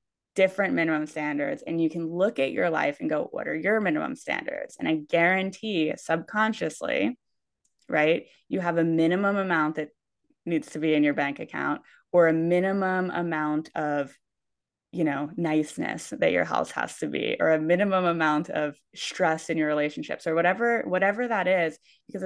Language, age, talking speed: English, 20-39, 175 wpm